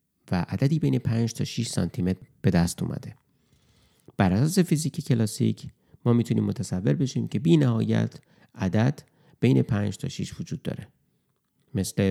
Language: English